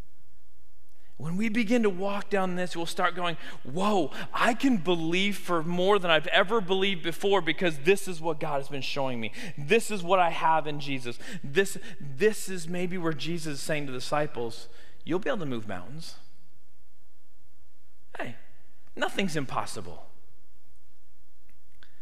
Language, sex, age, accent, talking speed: English, male, 40-59, American, 155 wpm